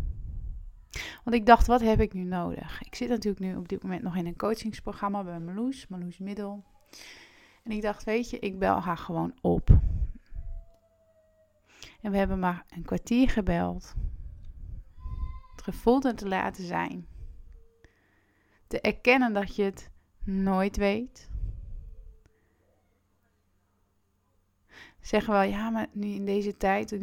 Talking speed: 140 wpm